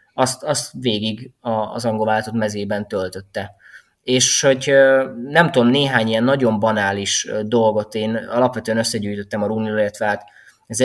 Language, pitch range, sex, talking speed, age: Hungarian, 105-130 Hz, male, 135 wpm, 20-39